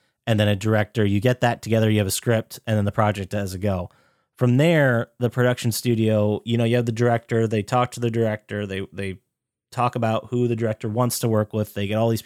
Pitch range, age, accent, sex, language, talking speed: 105-125 Hz, 30-49, American, male, English, 245 wpm